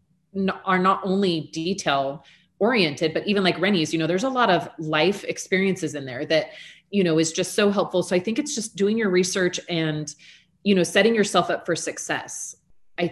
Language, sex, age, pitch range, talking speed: English, female, 30-49, 155-190 Hz, 195 wpm